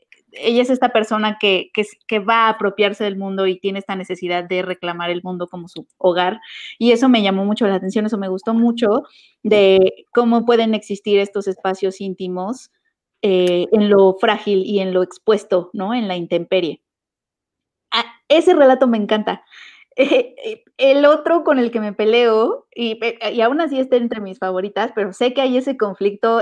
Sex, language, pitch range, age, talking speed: female, Spanish, 195-245 Hz, 30-49, 180 wpm